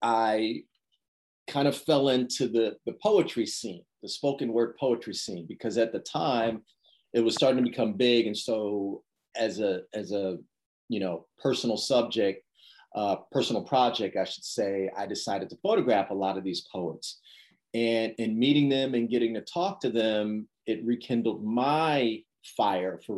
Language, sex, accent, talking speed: English, male, American, 165 wpm